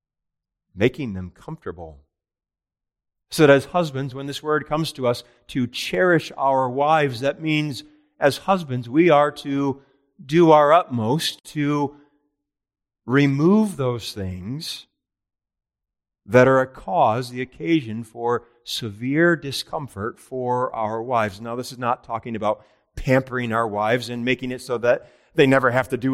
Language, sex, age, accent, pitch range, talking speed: English, male, 40-59, American, 115-145 Hz, 140 wpm